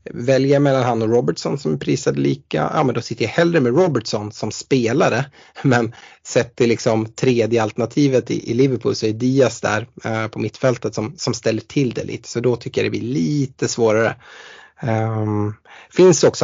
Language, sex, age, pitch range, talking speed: Swedish, male, 30-49, 110-130 Hz, 180 wpm